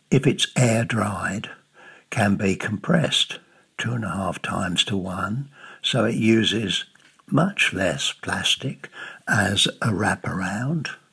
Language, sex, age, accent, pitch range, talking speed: English, male, 60-79, British, 100-120 Hz, 120 wpm